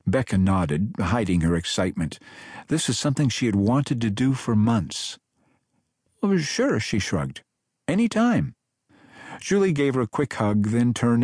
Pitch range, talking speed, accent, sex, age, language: 95-125 Hz, 150 wpm, American, male, 50-69, English